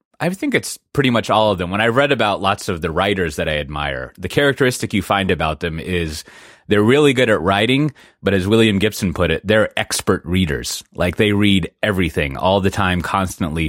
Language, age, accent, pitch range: English, 30-49, American, 80-105 Hz